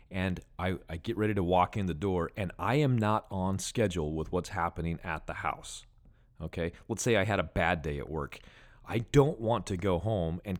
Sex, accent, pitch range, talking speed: male, American, 85-110 Hz, 220 wpm